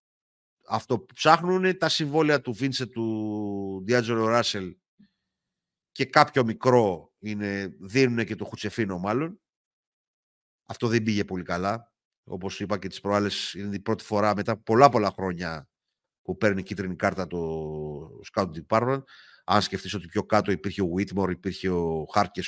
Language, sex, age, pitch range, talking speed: Greek, male, 50-69, 100-140 Hz, 145 wpm